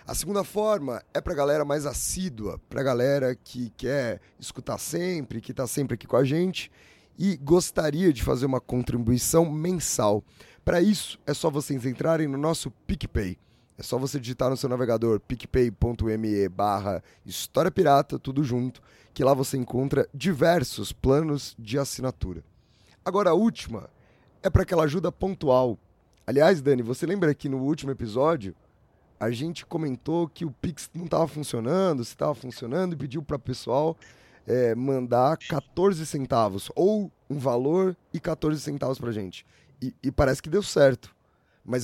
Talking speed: 160 wpm